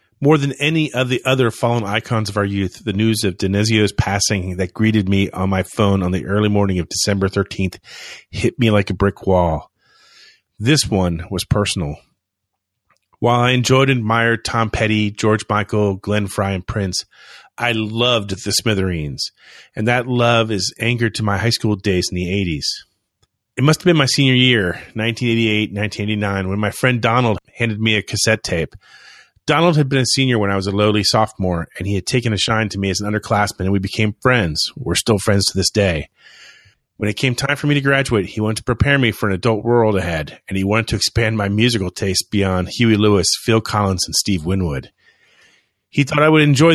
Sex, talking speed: male, 200 wpm